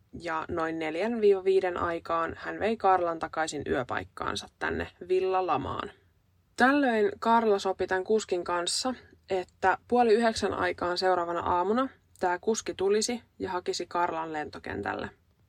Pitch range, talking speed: 165-210 Hz, 115 wpm